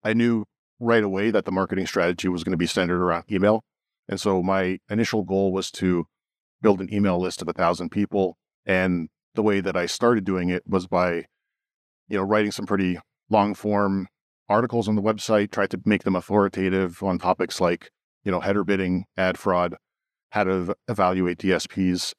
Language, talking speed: English, 185 wpm